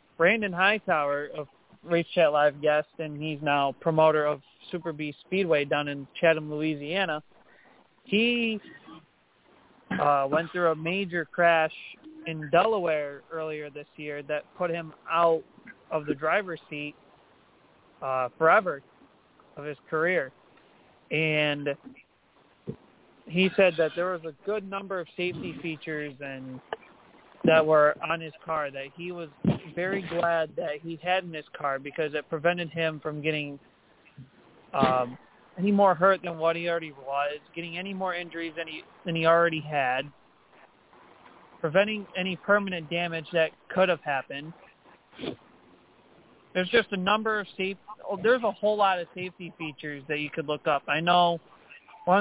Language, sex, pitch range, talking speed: English, male, 150-180 Hz, 145 wpm